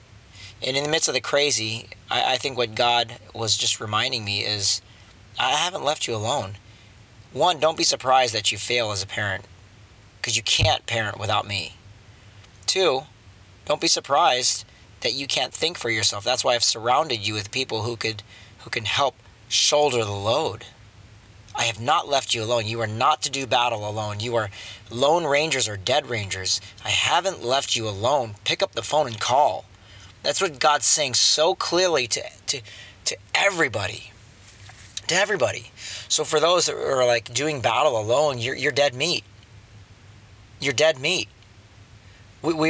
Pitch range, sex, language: 105-130 Hz, male, English